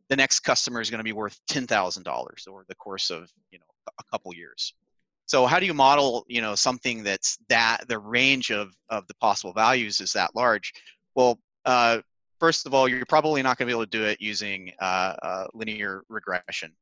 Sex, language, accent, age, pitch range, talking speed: male, English, American, 30-49, 105-130 Hz, 215 wpm